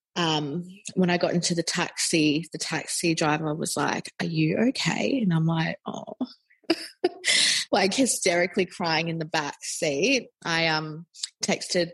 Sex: female